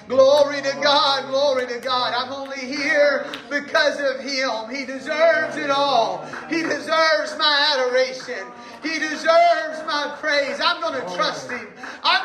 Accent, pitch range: American, 235-310 Hz